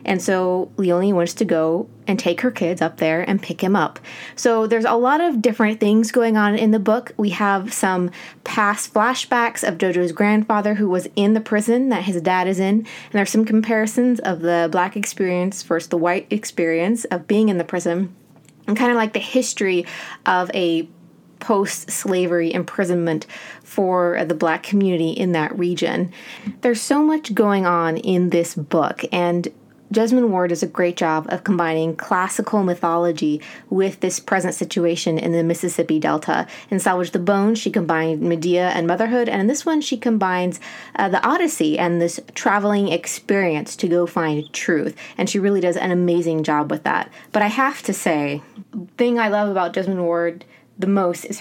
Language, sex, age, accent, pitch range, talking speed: English, female, 20-39, American, 175-215 Hz, 185 wpm